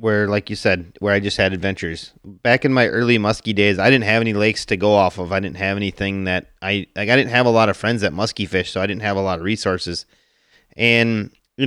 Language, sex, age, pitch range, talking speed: English, male, 30-49, 95-110 Hz, 260 wpm